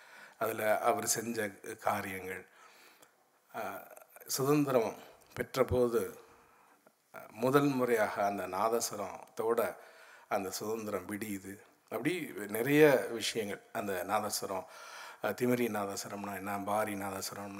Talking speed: 75 wpm